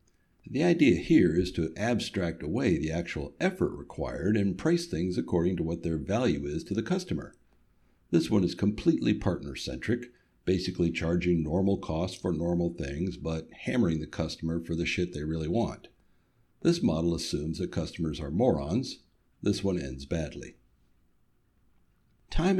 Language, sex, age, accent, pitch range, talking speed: English, male, 60-79, American, 80-105 Hz, 150 wpm